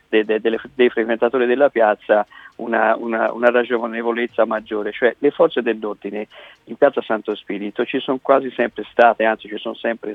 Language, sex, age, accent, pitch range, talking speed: Italian, male, 50-69, native, 115-135 Hz, 155 wpm